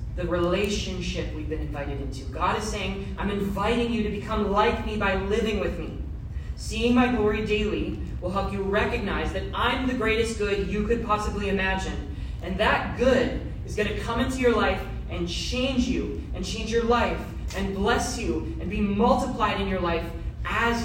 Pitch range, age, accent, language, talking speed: 190-235 Hz, 30-49, American, English, 185 wpm